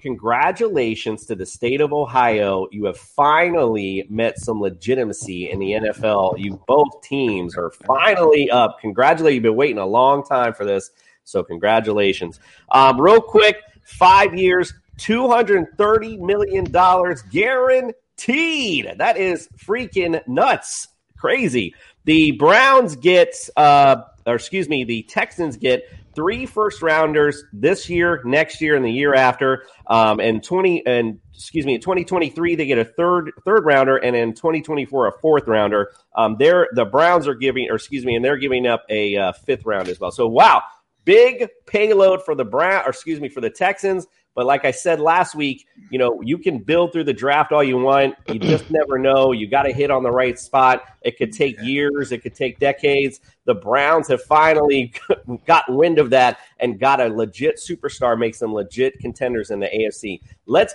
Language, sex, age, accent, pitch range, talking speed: English, male, 30-49, American, 120-180 Hz, 175 wpm